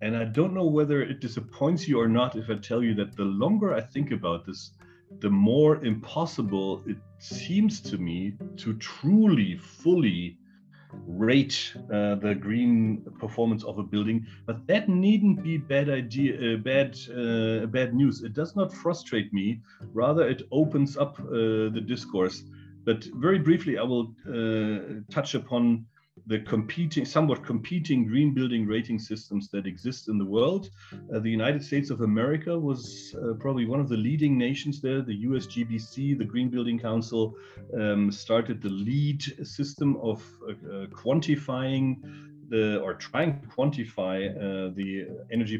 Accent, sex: German, male